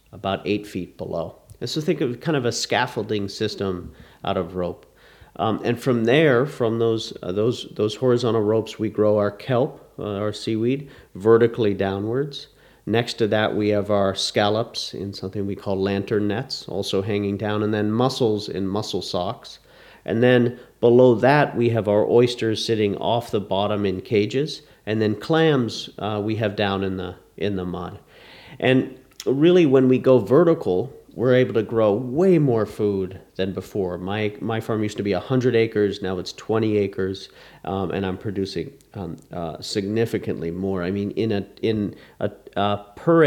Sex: male